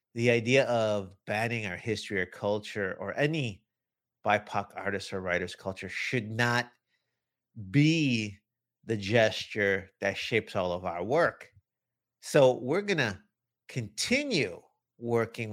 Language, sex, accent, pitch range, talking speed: English, male, American, 105-135 Hz, 125 wpm